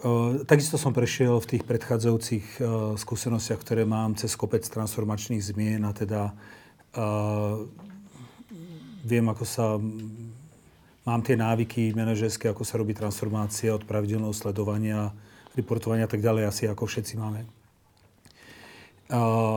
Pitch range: 110-130 Hz